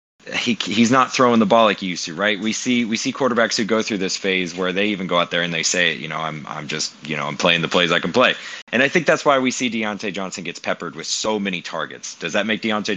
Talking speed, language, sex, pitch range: 290 wpm, English, male, 90-125 Hz